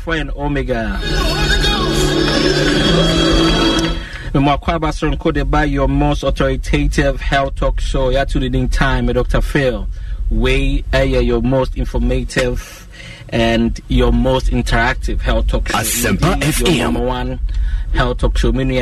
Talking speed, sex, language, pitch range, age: 130 wpm, male, English, 105-135 Hz, 30-49